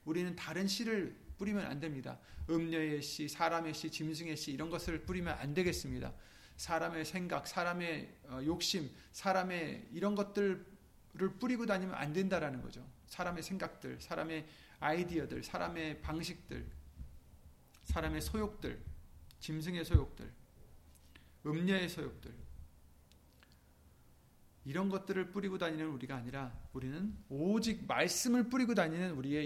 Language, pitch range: Korean, 130-190 Hz